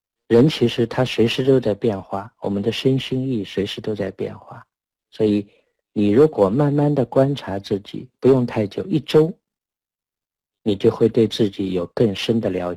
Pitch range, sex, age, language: 100-120 Hz, male, 50-69, Chinese